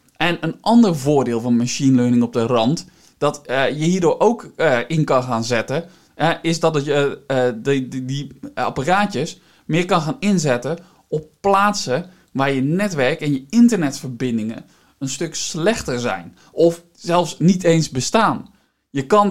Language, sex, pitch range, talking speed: Dutch, male, 130-165 Hz, 145 wpm